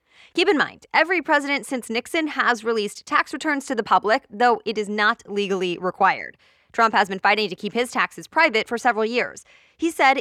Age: 20-39